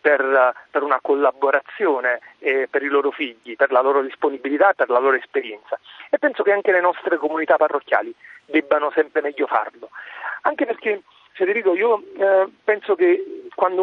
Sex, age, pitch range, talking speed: male, 40-59, 145-195 Hz, 160 wpm